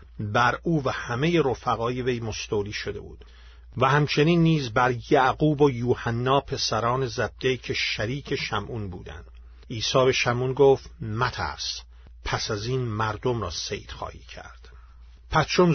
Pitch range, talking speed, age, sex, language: 100-135 Hz, 135 wpm, 50-69, male, Persian